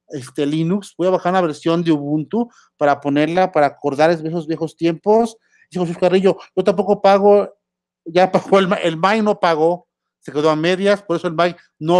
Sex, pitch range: male, 155-210 Hz